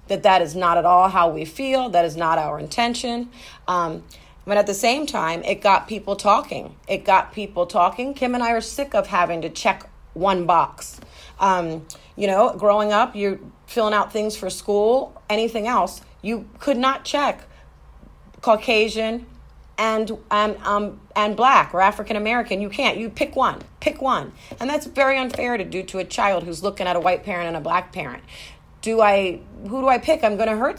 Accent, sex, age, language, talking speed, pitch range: American, female, 40-59, English, 190 wpm, 190-240 Hz